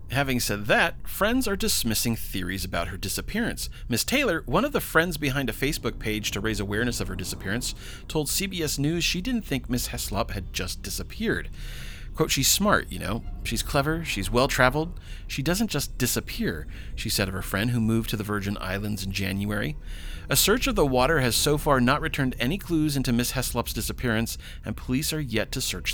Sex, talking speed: male, 195 wpm